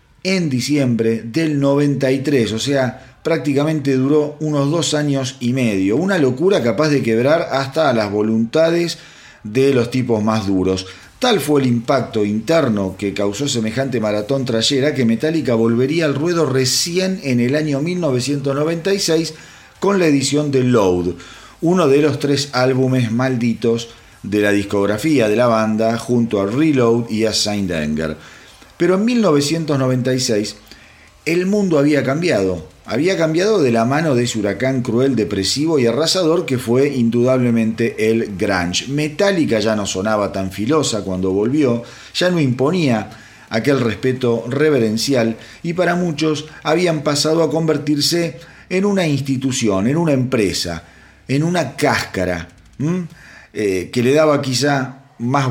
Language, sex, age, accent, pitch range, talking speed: Spanish, male, 40-59, Argentinian, 110-150 Hz, 140 wpm